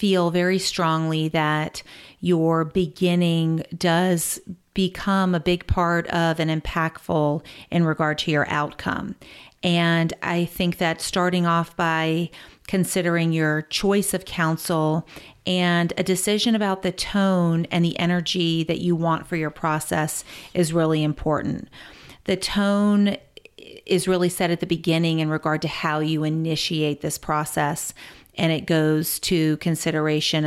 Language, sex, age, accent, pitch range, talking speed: English, female, 40-59, American, 160-180 Hz, 140 wpm